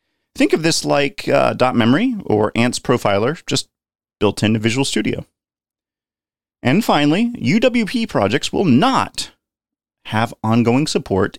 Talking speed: 120 wpm